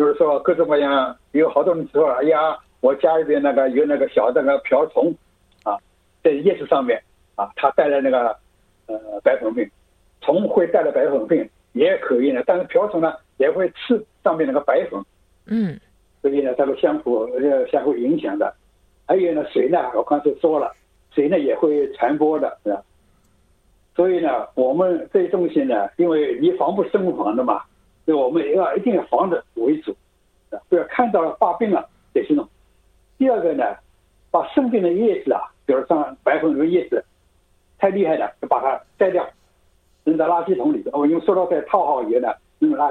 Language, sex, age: Chinese, male, 60-79